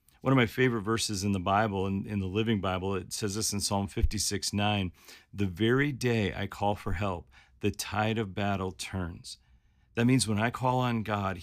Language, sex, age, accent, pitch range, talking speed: English, male, 40-59, American, 95-115 Hz, 205 wpm